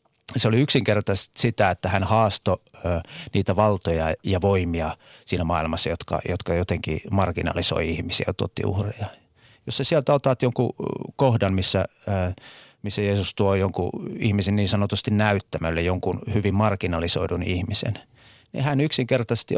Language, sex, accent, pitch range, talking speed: Finnish, male, native, 90-120 Hz, 130 wpm